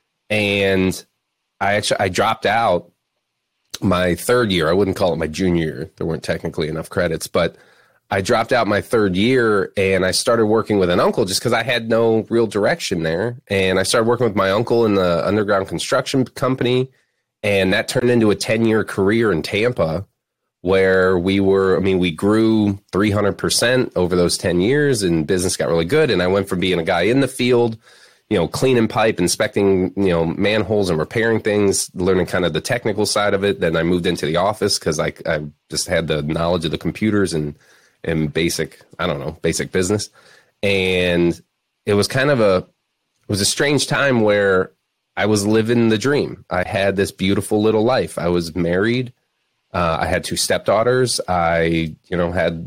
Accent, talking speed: American, 195 wpm